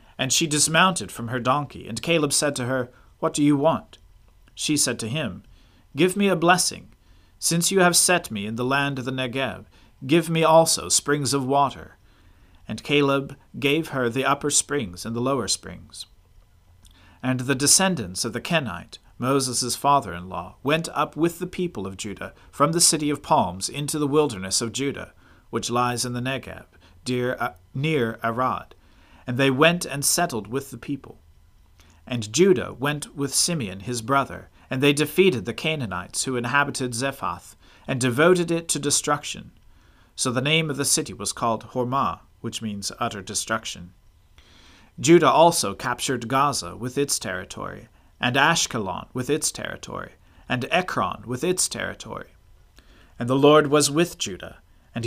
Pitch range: 105-150 Hz